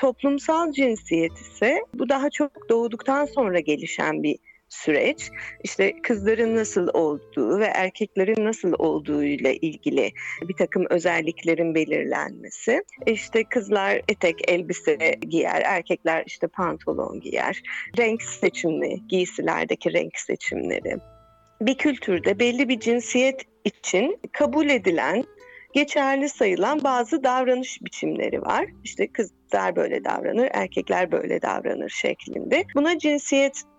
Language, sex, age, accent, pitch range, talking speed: Turkish, female, 40-59, native, 210-295 Hz, 110 wpm